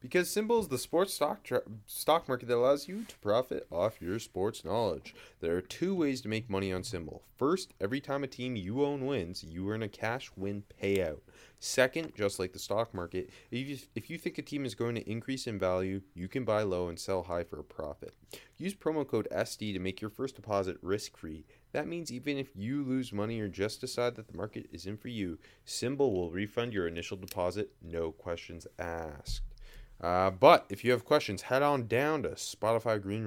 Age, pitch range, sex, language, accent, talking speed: 30-49, 90-130 Hz, male, English, American, 215 wpm